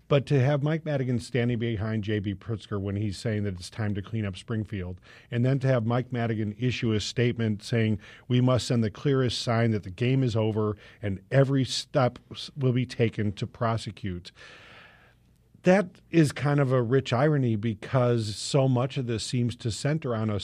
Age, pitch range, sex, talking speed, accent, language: 50-69, 110-130 Hz, male, 190 wpm, American, English